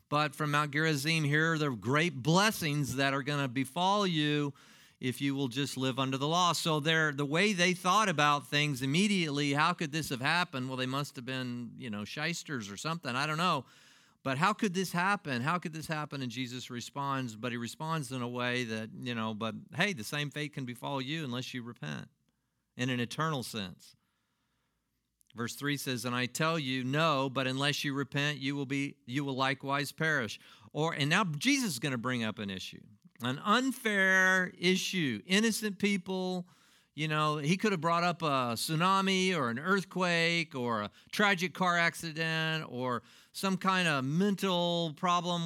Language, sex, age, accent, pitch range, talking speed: English, male, 50-69, American, 130-175 Hz, 190 wpm